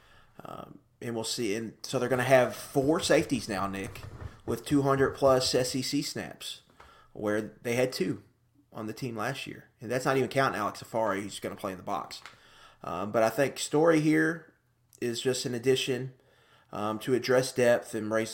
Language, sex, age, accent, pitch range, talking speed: English, male, 30-49, American, 110-130 Hz, 185 wpm